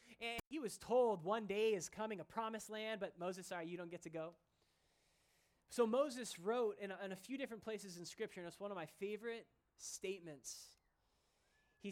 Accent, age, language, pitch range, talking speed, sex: American, 20-39, English, 170-225 Hz, 190 wpm, male